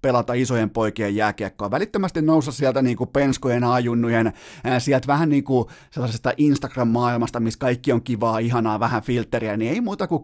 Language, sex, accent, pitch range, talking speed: Finnish, male, native, 115-150 Hz, 160 wpm